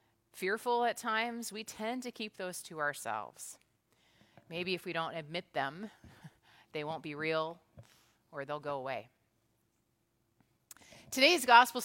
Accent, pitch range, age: American, 160-230 Hz, 40-59